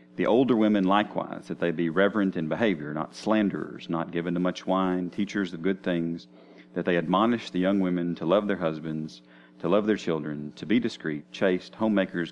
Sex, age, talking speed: male, 40-59, 195 wpm